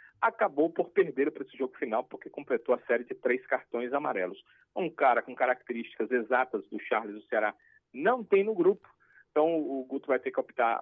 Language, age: Portuguese, 40-59